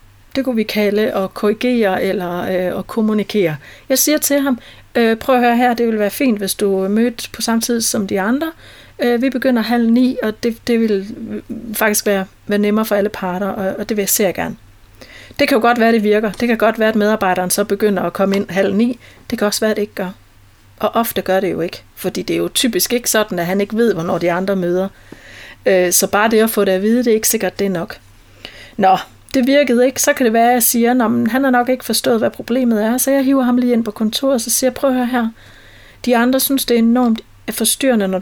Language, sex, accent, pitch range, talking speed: Danish, female, native, 185-240 Hz, 255 wpm